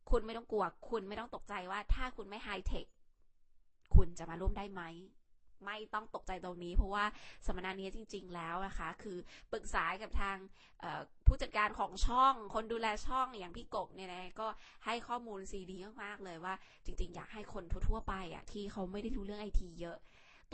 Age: 20-39